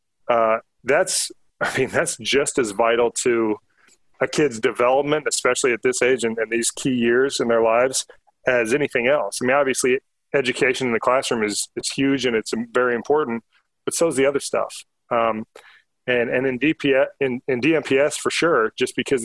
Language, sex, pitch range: English, male, 120-140 Hz